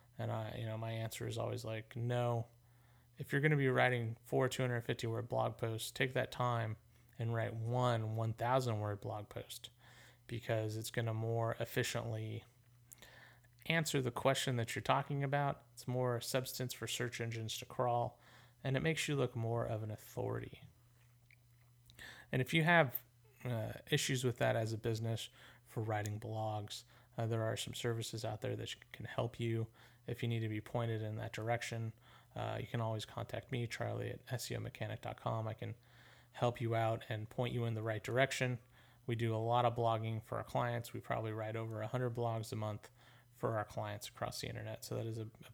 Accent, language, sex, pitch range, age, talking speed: American, English, male, 115-125 Hz, 30-49, 190 wpm